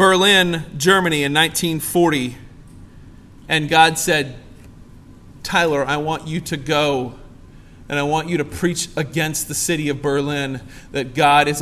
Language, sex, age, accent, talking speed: English, male, 40-59, American, 140 wpm